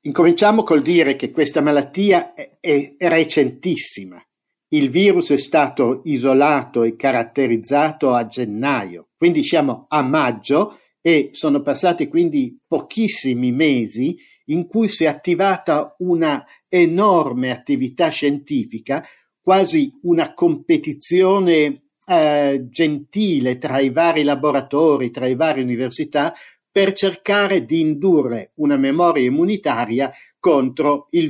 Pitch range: 140-200 Hz